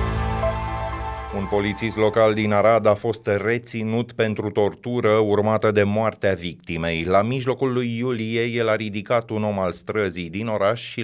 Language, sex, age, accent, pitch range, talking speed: Romanian, male, 30-49, native, 95-115 Hz, 150 wpm